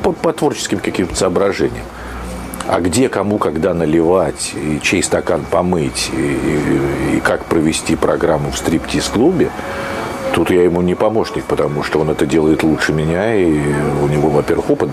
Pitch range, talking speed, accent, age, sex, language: 95-155 Hz, 155 wpm, native, 50-69, male, Russian